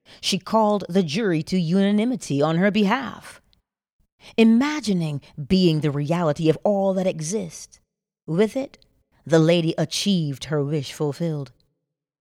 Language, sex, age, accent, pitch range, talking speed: English, female, 40-59, American, 150-195 Hz, 125 wpm